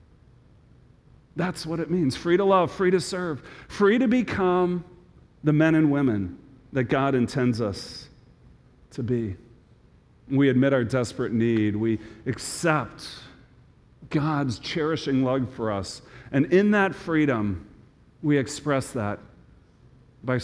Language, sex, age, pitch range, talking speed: English, male, 40-59, 120-185 Hz, 125 wpm